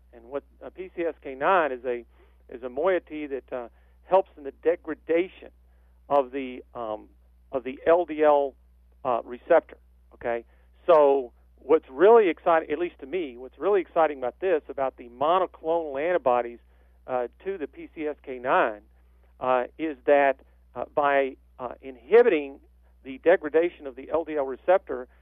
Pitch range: 125-160 Hz